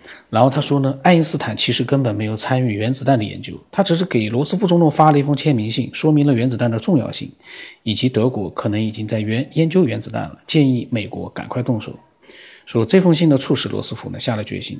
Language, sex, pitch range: Chinese, male, 115-145 Hz